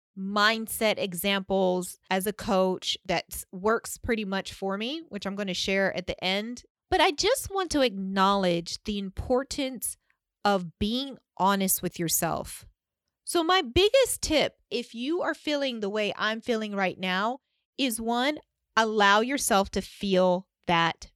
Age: 30-49